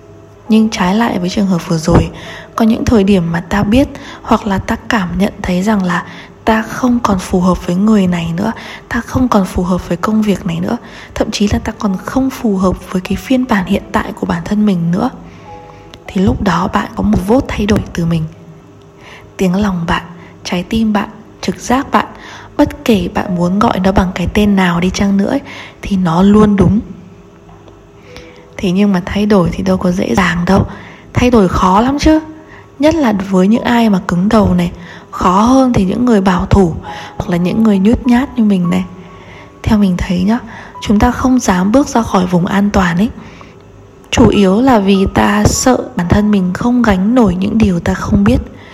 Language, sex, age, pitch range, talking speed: Vietnamese, female, 20-39, 180-225 Hz, 210 wpm